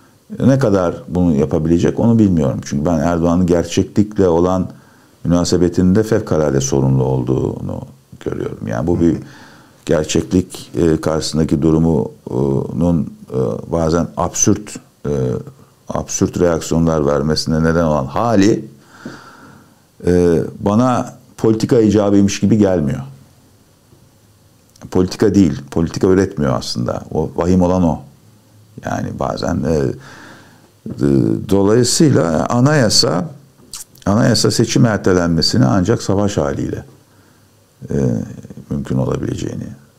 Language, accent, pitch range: Turkish, native, 80-105 Hz